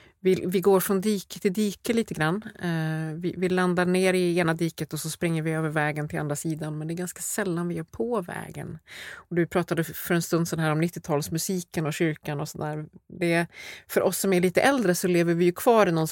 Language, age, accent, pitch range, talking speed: Swedish, 30-49, native, 150-185 Hz, 225 wpm